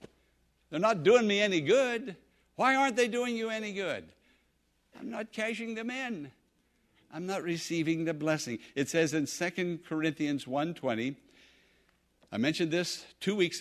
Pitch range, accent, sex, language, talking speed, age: 150-230 Hz, American, male, English, 150 wpm, 60-79